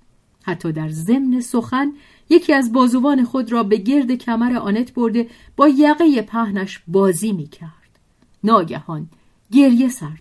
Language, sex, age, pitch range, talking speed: Persian, female, 40-59, 170-245 Hz, 135 wpm